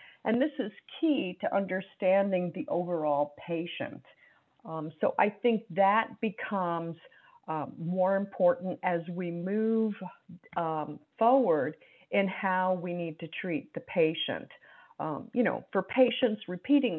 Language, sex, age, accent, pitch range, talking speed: English, female, 50-69, American, 170-220 Hz, 130 wpm